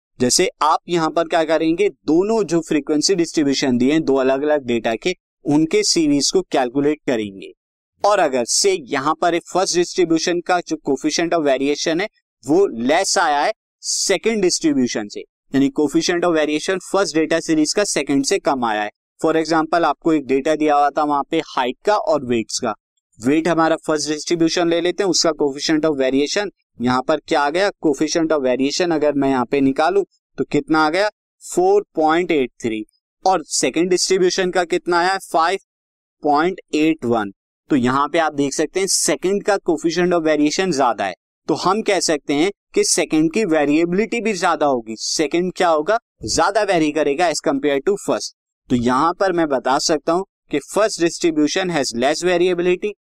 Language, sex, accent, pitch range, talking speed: Hindi, male, native, 145-190 Hz, 175 wpm